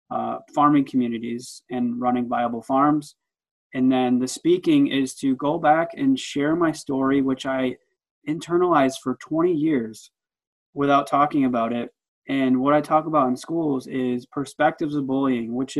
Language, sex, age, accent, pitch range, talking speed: English, male, 20-39, American, 125-145 Hz, 155 wpm